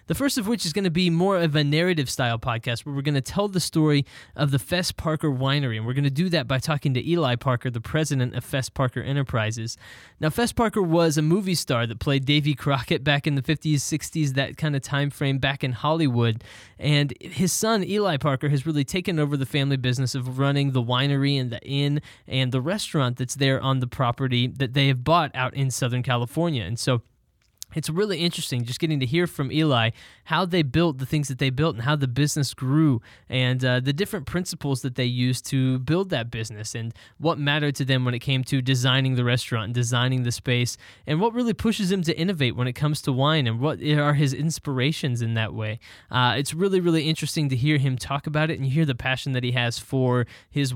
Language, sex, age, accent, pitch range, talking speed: English, male, 20-39, American, 125-155 Hz, 230 wpm